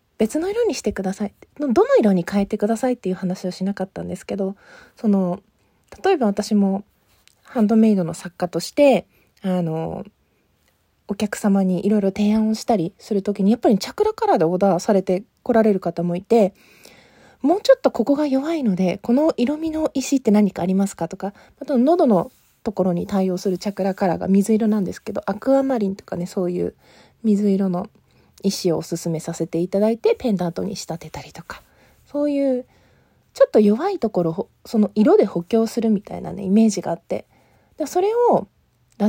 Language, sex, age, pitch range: Japanese, female, 20-39, 185-265 Hz